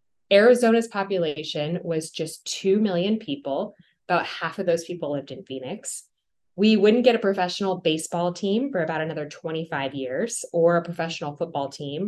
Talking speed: 160 wpm